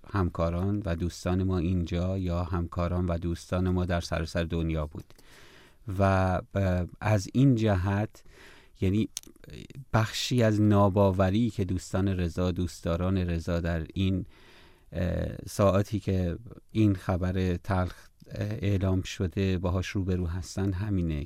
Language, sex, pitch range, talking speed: Persian, male, 85-100 Hz, 115 wpm